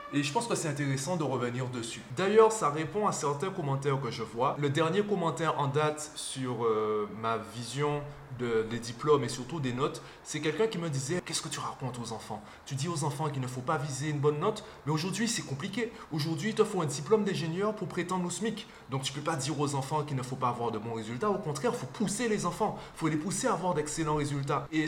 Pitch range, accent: 130-160 Hz, French